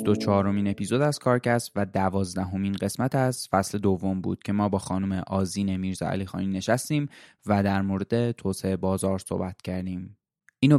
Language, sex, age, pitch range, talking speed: Persian, male, 20-39, 95-110 Hz, 150 wpm